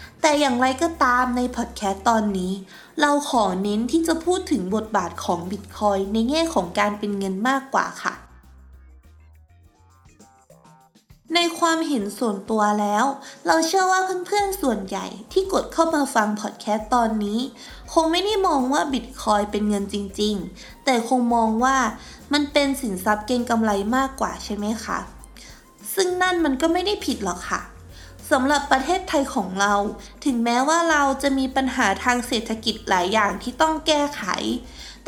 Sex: female